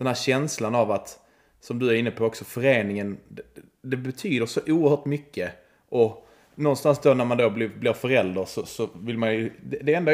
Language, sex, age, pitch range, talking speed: Swedish, male, 30-49, 110-145 Hz, 200 wpm